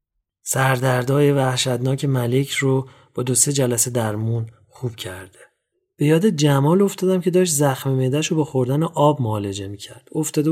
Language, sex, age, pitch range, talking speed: English, male, 30-49, 120-150 Hz, 150 wpm